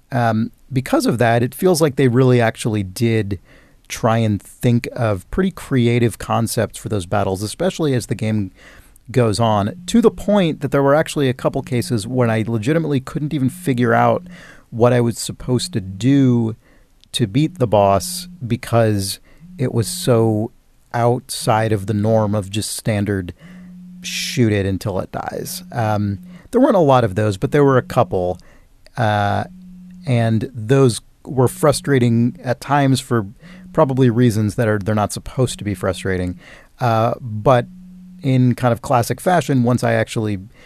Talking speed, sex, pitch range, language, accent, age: 160 wpm, male, 105-135 Hz, English, American, 40-59